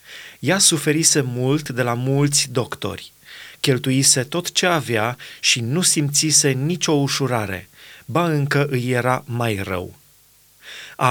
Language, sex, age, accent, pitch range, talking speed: Romanian, male, 30-49, native, 125-155 Hz, 125 wpm